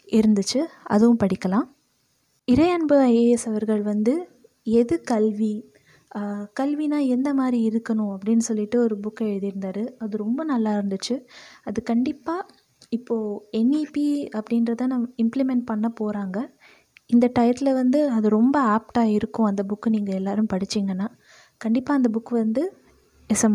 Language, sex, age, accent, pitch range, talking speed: Tamil, female, 20-39, native, 215-260 Hz, 120 wpm